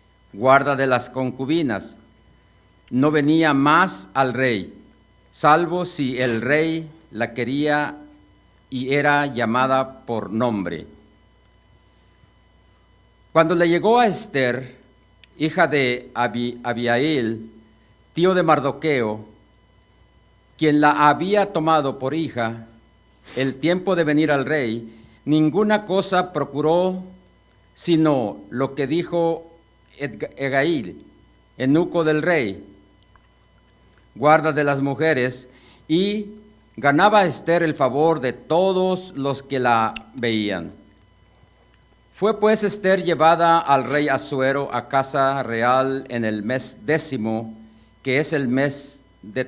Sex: male